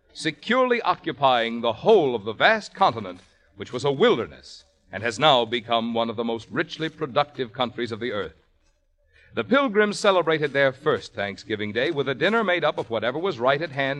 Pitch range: 120-190 Hz